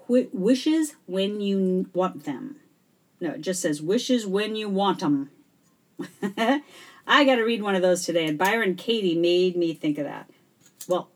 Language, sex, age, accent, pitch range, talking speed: English, female, 50-69, American, 170-245 Hz, 175 wpm